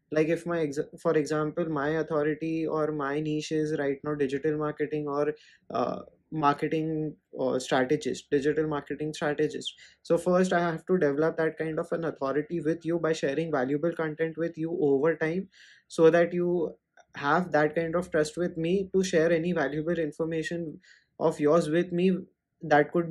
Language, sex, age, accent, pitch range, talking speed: English, male, 20-39, Indian, 150-175 Hz, 170 wpm